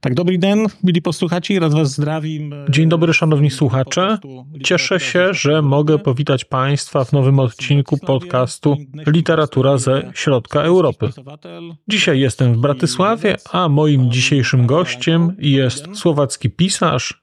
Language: Polish